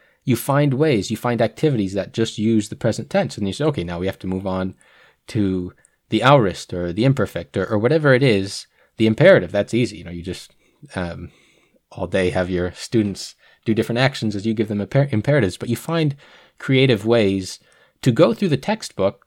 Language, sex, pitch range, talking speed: English, male, 100-125 Hz, 200 wpm